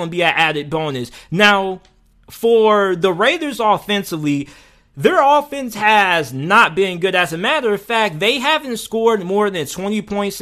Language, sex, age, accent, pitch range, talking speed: English, male, 20-39, American, 175-220 Hz, 155 wpm